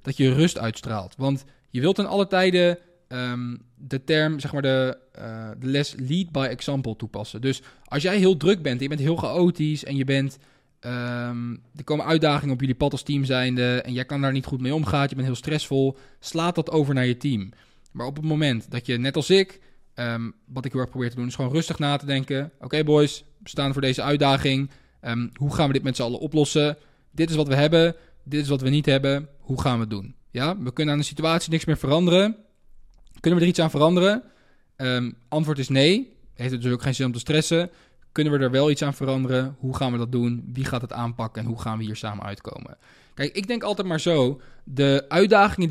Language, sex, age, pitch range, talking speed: Dutch, male, 20-39, 125-155 Hz, 235 wpm